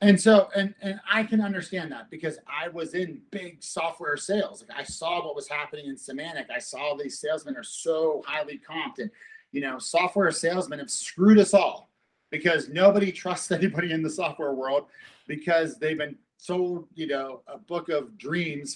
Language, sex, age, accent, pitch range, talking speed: English, male, 30-49, American, 165-210 Hz, 185 wpm